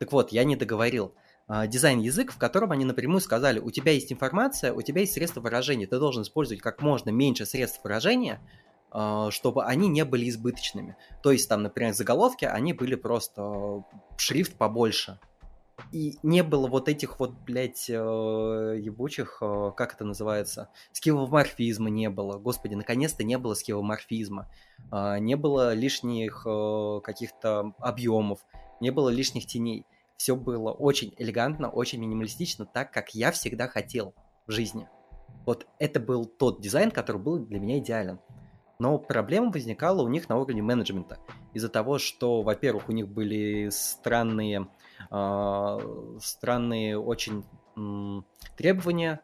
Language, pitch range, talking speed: Russian, 105-135 Hz, 140 wpm